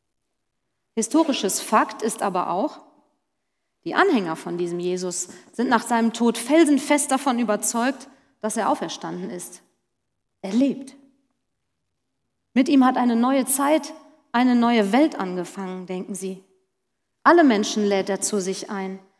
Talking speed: 130 wpm